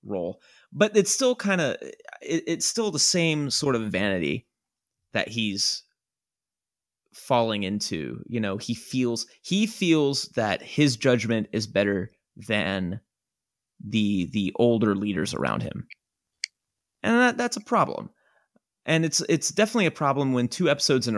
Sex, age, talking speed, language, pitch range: male, 30-49, 145 wpm, English, 110-145 Hz